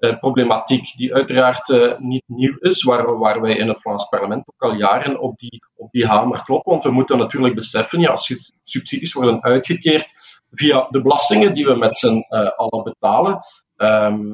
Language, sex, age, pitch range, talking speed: Dutch, male, 50-69, 125-165 Hz, 190 wpm